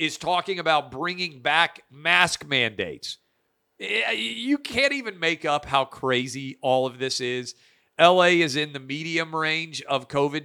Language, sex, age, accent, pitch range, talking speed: English, male, 40-59, American, 120-155 Hz, 150 wpm